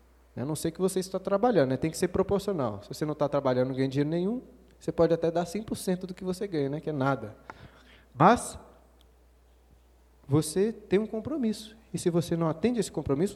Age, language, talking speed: 20-39, Portuguese, 210 wpm